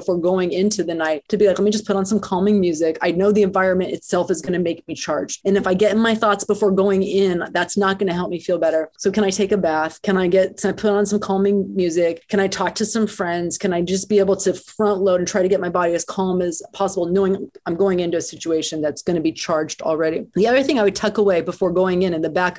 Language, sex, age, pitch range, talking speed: English, female, 30-49, 185-230 Hz, 290 wpm